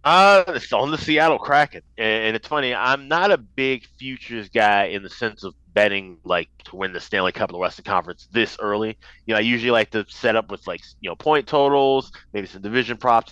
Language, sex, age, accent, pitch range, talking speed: English, male, 30-49, American, 105-130 Hz, 230 wpm